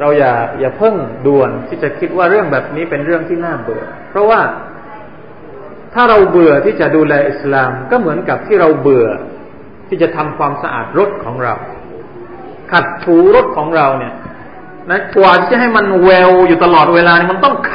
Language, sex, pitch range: Thai, male, 175-240 Hz